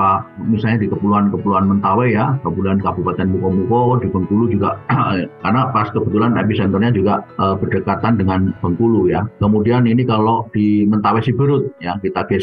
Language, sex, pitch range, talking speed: Indonesian, male, 100-125 Hz, 145 wpm